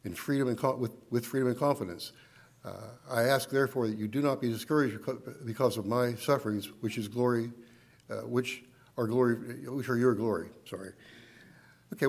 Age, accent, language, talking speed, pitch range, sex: 60-79, American, English, 180 wpm, 115-135 Hz, male